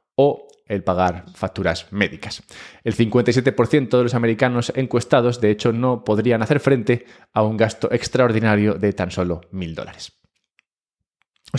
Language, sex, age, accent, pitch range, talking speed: English, male, 20-39, Spanish, 100-130 Hz, 140 wpm